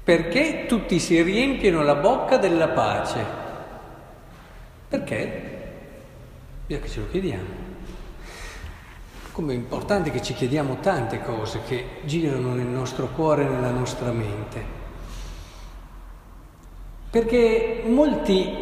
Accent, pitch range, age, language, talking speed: native, 150-220 Hz, 50-69, Italian, 105 wpm